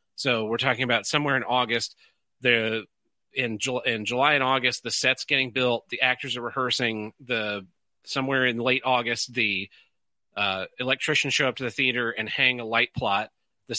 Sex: male